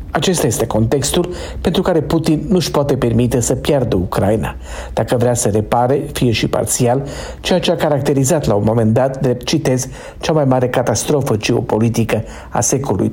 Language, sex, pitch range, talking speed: Romanian, male, 115-150 Hz, 165 wpm